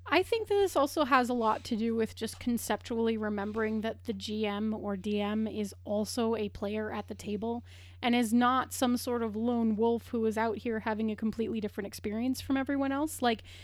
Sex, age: female, 30-49